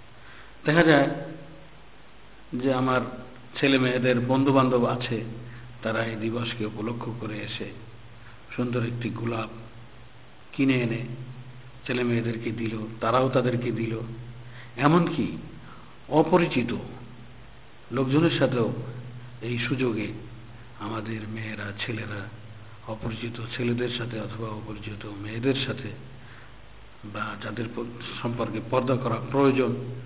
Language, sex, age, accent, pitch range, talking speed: Bengali, male, 50-69, native, 115-125 Hz, 95 wpm